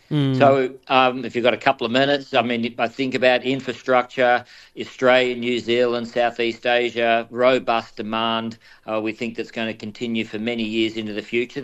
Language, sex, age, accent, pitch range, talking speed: English, male, 40-59, Australian, 105-120 Hz, 185 wpm